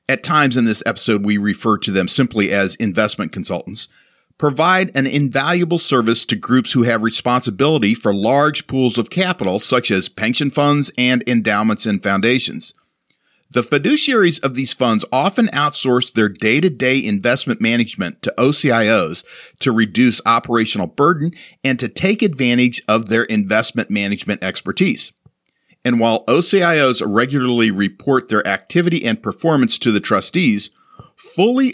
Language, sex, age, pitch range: English, male, 40-59, 110-150 Hz